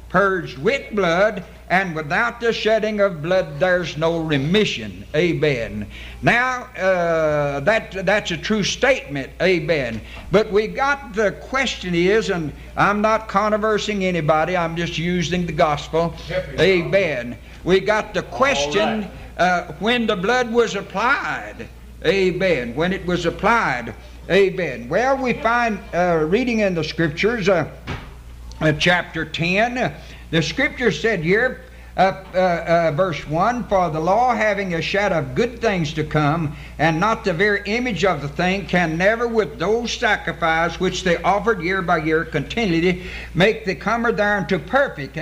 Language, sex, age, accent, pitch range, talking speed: English, male, 60-79, American, 165-210 Hz, 150 wpm